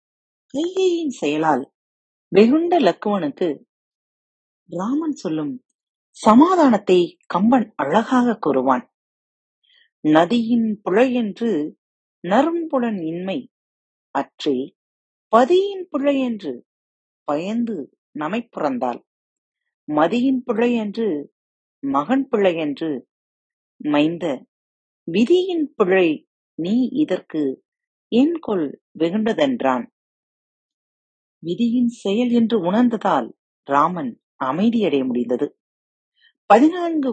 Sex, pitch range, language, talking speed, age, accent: female, 175-285 Hz, Tamil, 65 wpm, 40-59, native